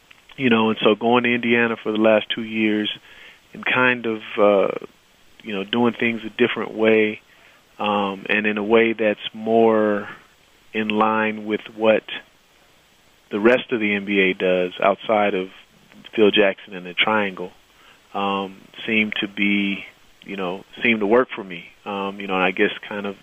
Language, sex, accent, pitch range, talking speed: English, male, American, 100-110 Hz, 170 wpm